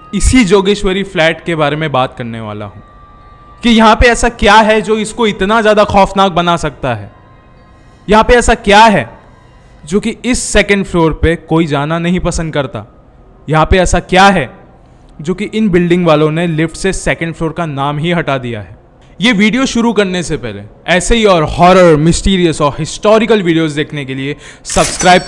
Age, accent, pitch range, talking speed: 20-39, native, 145-205 Hz, 190 wpm